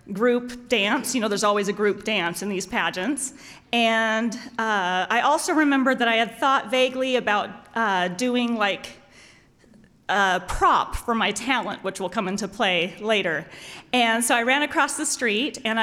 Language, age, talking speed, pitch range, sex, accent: English, 40-59, 170 wpm, 205-265 Hz, female, American